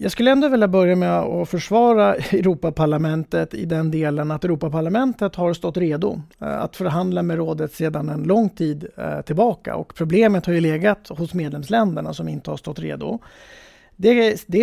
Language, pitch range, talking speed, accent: English, 160-195 Hz, 160 wpm, Swedish